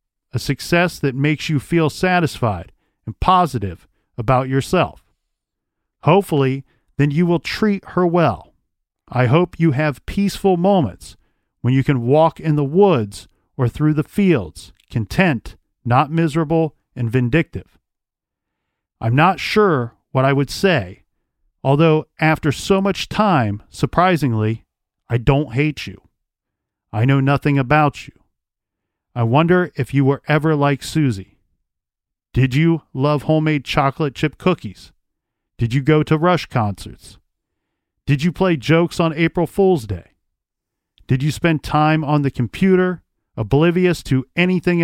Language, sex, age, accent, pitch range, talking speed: English, male, 40-59, American, 120-160 Hz, 135 wpm